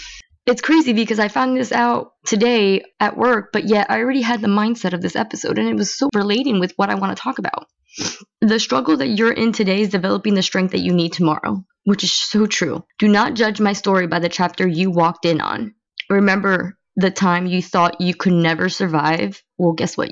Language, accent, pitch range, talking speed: English, American, 180-225 Hz, 220 wpm